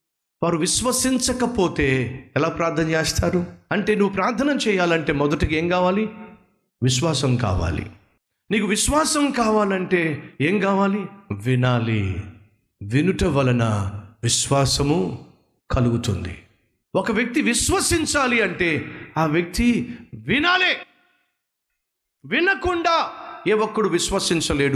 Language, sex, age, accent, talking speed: Telugu, male, 50-69, native, 50 wpm